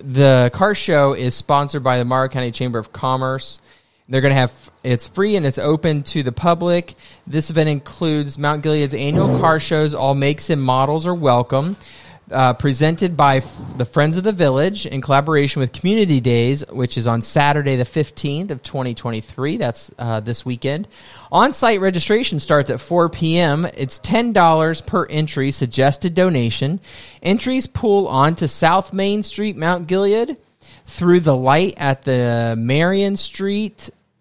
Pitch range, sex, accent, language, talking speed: 130-170 Hz, male, American, English, 160 wpm